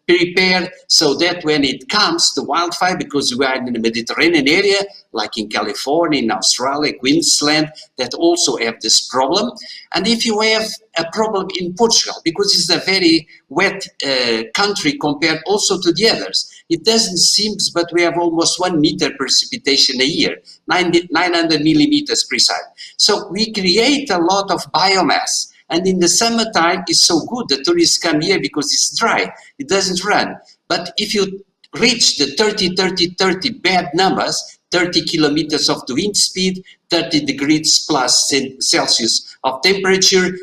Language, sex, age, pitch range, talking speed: English, male, 50-69, 155-210 Hz, 160 wpm